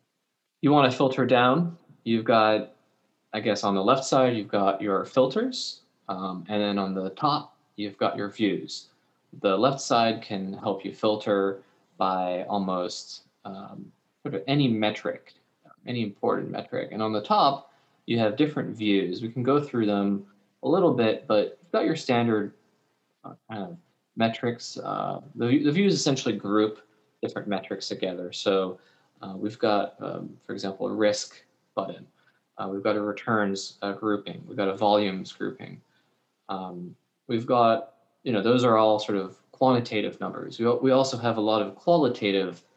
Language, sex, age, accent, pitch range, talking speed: English, male, 20-39, American, 100-125 Hz, 165 wpm